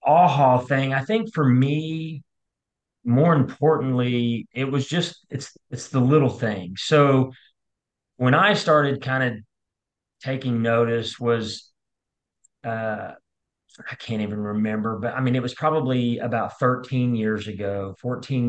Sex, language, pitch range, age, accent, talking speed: male, English, 110-130 Hz, 30-49, American, 135 wpm